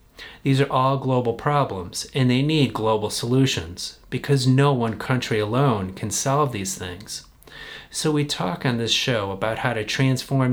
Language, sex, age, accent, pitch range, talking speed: English, male, 30-49, American, 110-140 Hz, 165 wpm